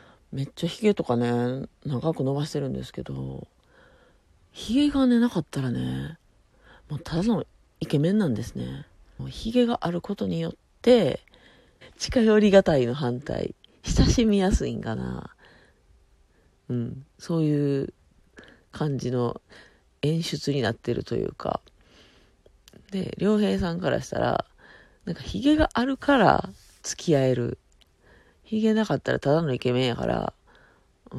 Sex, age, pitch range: female, 40-59, 120-205 Hz